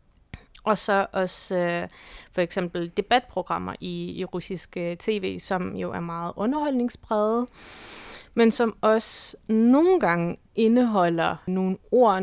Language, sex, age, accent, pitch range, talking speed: Danish, female, 20-39, native, 180-220 Hz, 115 wpm